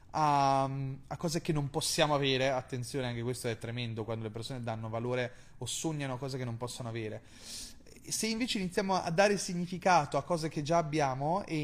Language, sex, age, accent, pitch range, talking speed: Italian, male, 30-49, native, 130-160 Hz, 185 wpm